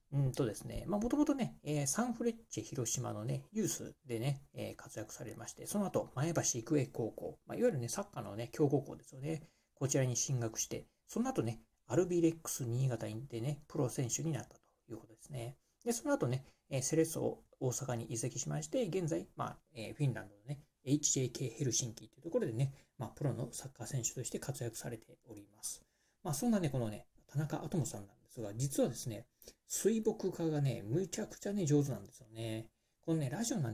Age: 40-59